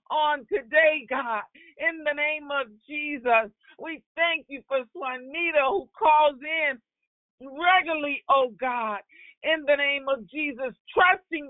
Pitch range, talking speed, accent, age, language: 240-315 Hz, 130 wpm, American, 50-69, English